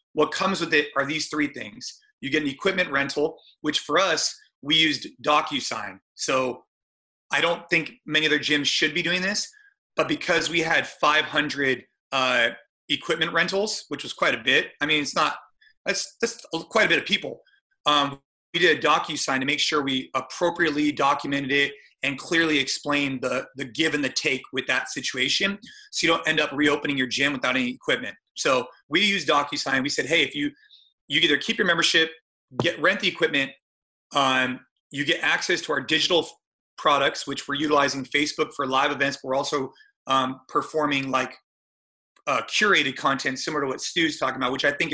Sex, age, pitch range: male, 30-49, 140-175 Hz